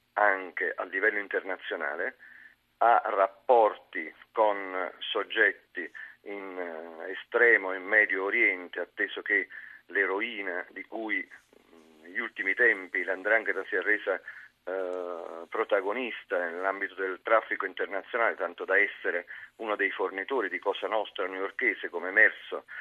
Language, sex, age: Italian, male, 50-69